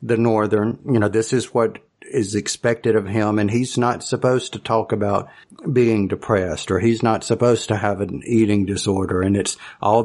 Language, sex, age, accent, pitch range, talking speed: English, male, 50-69, American, 100-120 Hz, 190 wpm